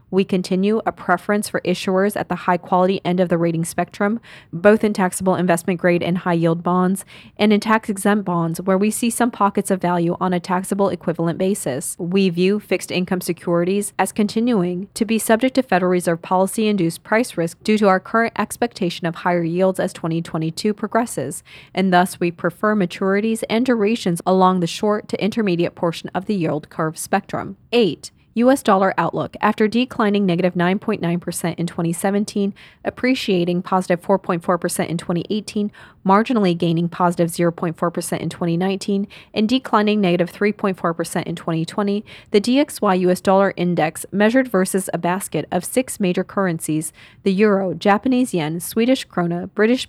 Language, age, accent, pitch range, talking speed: English, 20-39, American, 175-210 Hz, 150 wpm